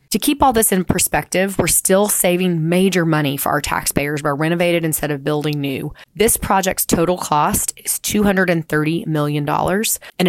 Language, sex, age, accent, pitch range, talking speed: English, female, 20-39, American, 150-175 Hz, 165 wpm